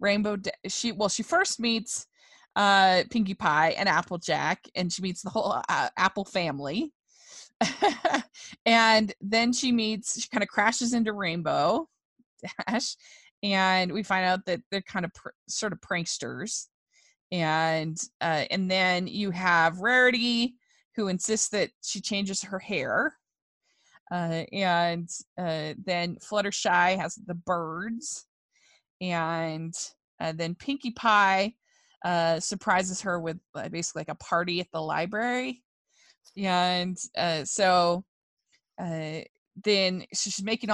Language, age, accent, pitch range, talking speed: English, 20-39, American, 170-215 Hz, 130 wpm